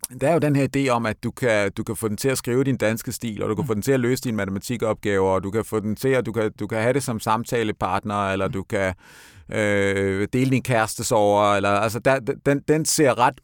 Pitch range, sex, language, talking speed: 105-145 Hz, male, Danish, 270 wpm